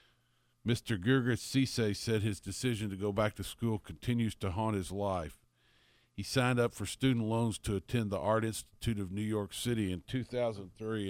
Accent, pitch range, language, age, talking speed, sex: American, 95-115 Hz, English, 50-69, 180 wpm, male